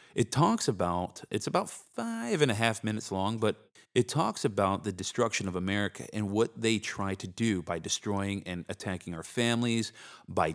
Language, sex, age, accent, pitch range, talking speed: English, male, 30-49, American, 90-115 Hz, 180 wpm